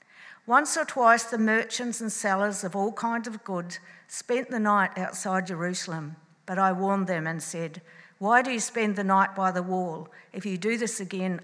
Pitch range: 170-215 Hz